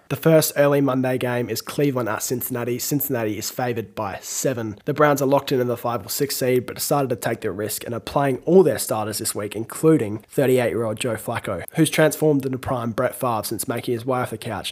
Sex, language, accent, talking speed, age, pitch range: male, English, Australian, 225 wpm, 20-39, 110-135 Hz